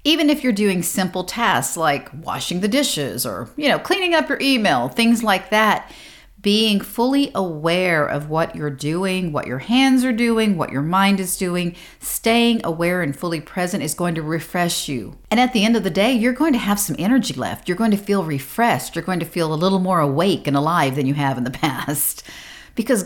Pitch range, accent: 155-215 Hz, American